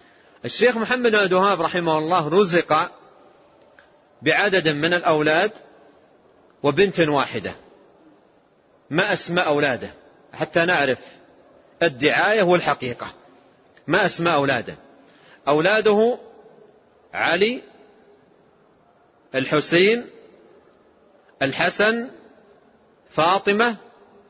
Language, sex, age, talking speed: Arabic, male, 40-59, 65 wpm